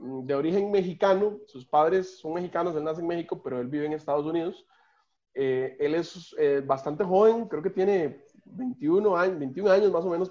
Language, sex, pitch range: Spanish, male, 140-200 Hz